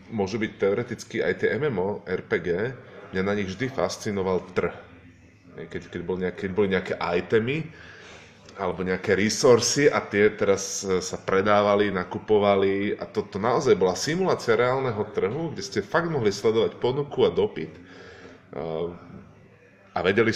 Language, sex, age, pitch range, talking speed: Slovak, male, 20-39, 95-115 Hz, 135 wpm